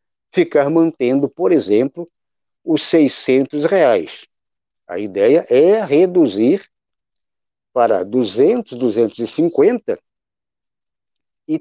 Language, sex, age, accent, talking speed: Portuguese, male, 60-79, Brazilian, 80 wpm